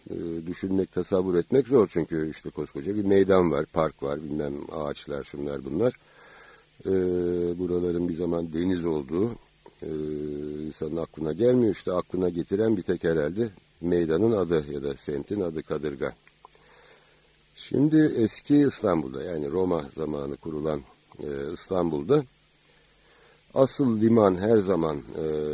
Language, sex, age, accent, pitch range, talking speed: English, male, 60-79, Turkish, 80-105 Hz, 125 wpm